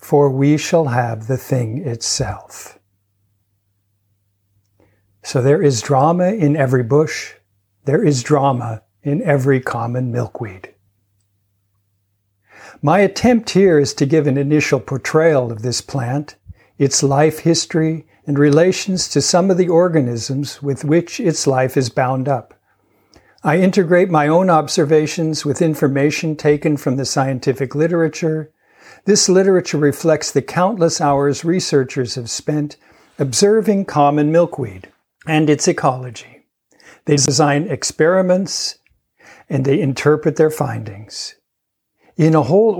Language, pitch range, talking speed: English, 130-165 Hz, 125 wpm